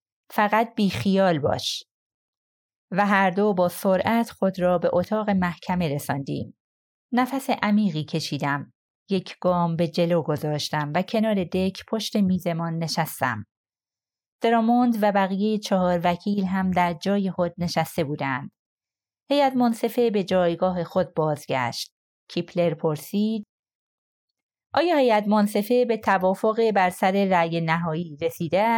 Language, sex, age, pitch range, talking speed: Persian, female, 30-49, 170-220 Hz, 120 wpm